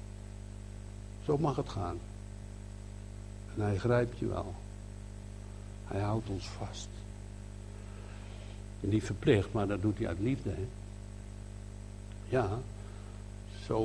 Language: Dutch